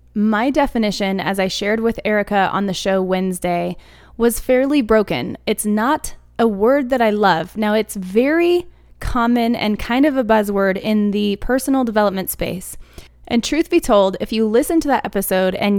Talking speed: 175 wpm